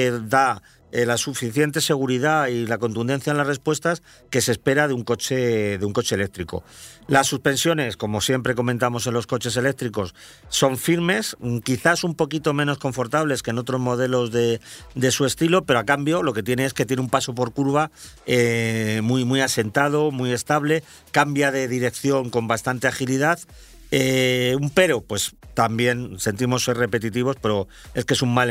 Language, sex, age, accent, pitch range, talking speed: Spanish, male, 40-59, Spanish, 120-140 Hz, 175 wpm